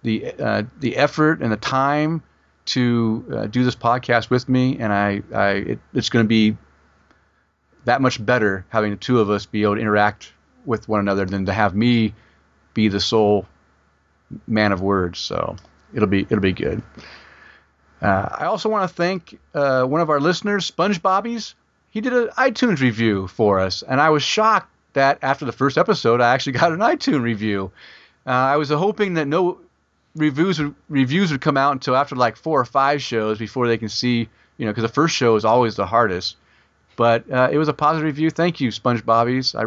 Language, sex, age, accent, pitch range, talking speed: English, male, 40-59, American, 105-140 Hz, 200 wpm